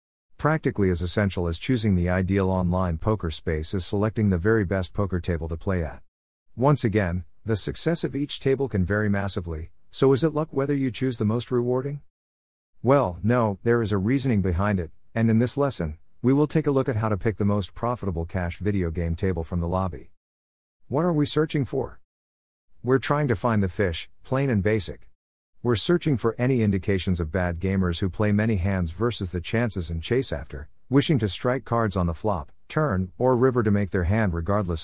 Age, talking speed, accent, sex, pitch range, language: 50-69, 205 wpm, American, male, 85-115 Hz, English